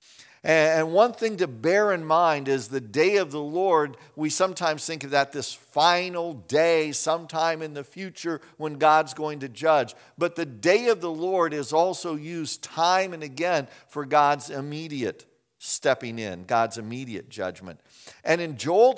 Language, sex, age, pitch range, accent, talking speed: English, male, 50-69, 135-180 Hz, American, 170 wpm